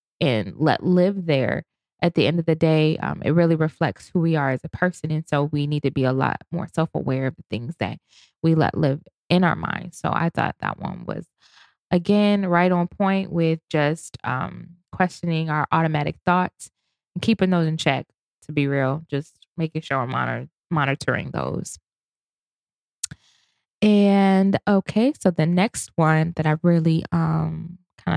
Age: 20-39